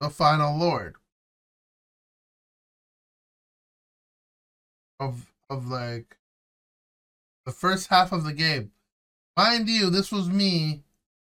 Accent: American